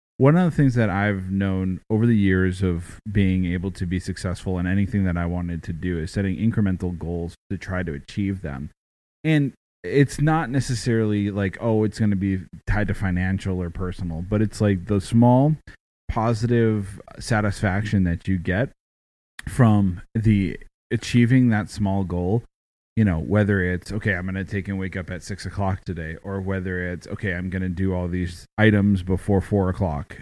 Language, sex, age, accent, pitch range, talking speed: English, male, 30-49, American, 90-105 Hz, 185 wpm